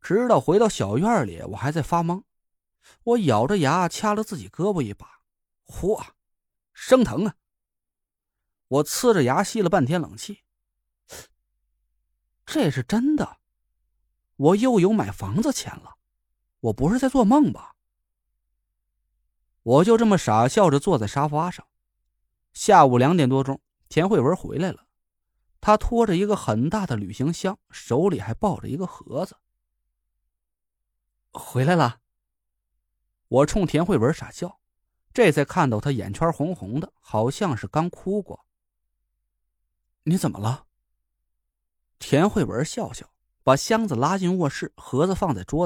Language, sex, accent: Chinese, male, native